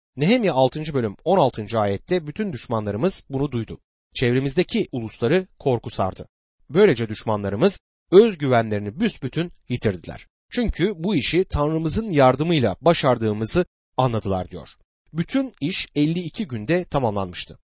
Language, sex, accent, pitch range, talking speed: Turkish, male, native, 110-180 Hz, 110 wpm